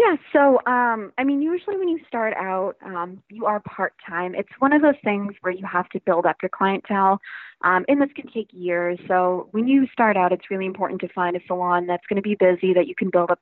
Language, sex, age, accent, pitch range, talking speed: English, female, 20-39, American, 180-215 Hz, 250 wpm